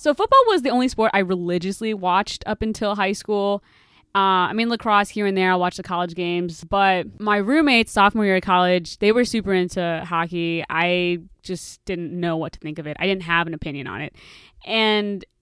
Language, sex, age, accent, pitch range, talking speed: English, female, 20-39, American, 185-245 Hz, 210 wpm